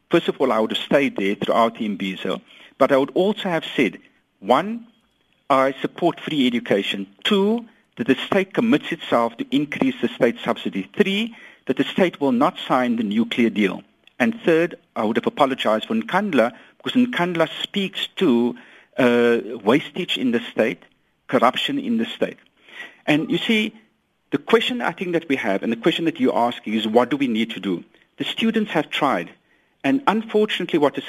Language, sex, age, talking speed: English, male, 60-79, 185 wpm